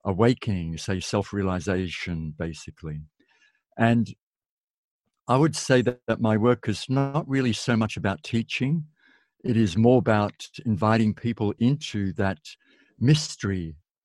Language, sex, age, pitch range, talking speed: English, male, 60-79, 100-125 Hz, 120 wpm